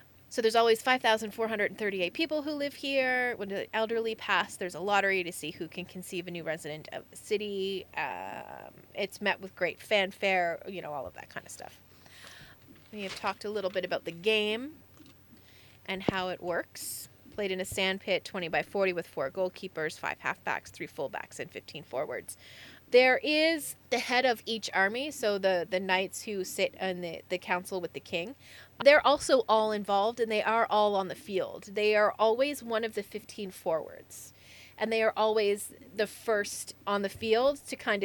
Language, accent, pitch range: English, American, 185-225 Hz